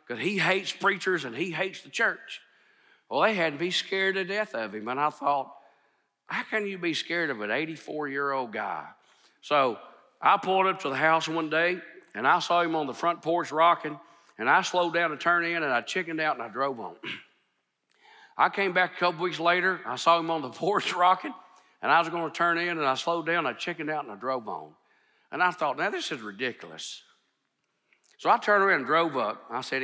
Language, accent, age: English, American, 50-69